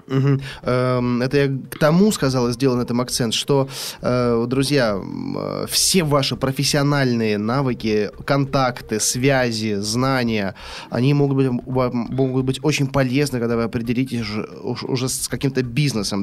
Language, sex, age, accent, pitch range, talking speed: Russian, male, 20-39, native, 110-135 Hz, 125 wpm